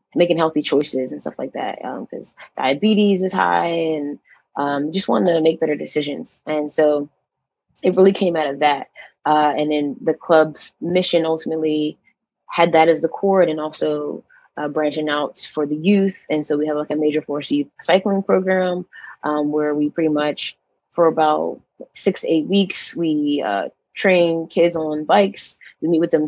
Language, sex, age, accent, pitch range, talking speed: English, female, 20-39, American, 145-170 Hz, 180 wpm